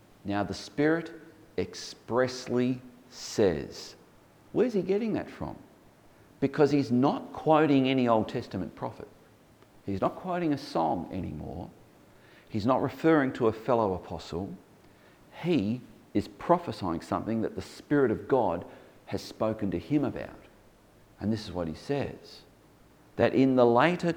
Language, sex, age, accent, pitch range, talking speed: English, male, 40-59, Australian, 95-125 Hz, 135 wpm